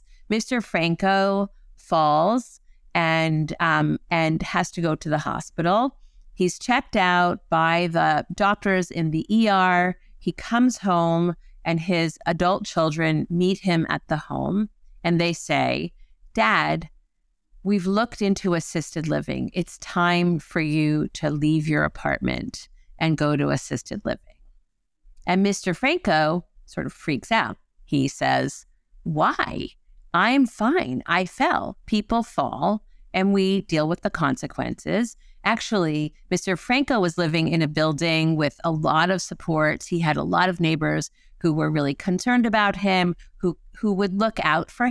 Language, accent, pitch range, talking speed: English, American, 160-205 Hz, 145 wpm